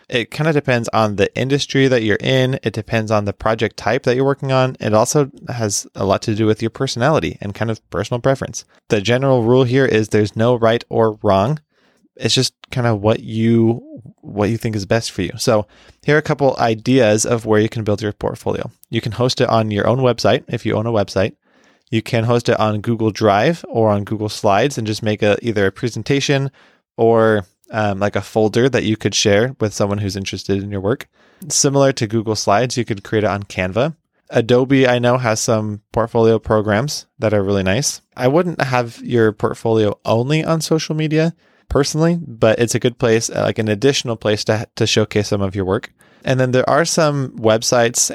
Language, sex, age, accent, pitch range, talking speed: English, male, 20-39, American, 105-130 Hz, 215 wpm